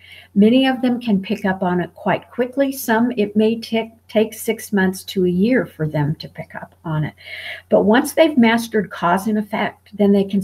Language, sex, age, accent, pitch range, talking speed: English, female, 50-69, American, 180-225 Hz, 205 wpm